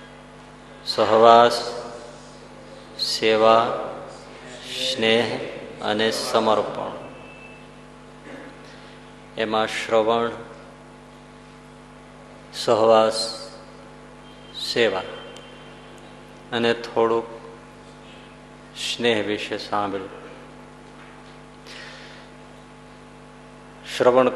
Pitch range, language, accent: 110-120 Hz, Gujarati, native